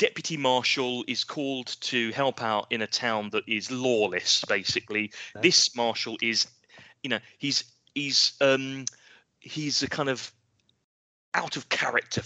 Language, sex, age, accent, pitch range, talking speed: English, male, 30-49, British, 105-140 Hz, 135 wpm